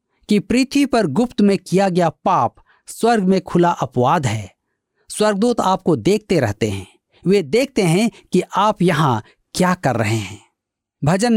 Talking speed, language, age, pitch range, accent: 155 wpm, Hindi, 50-69, 130-205 Hz, native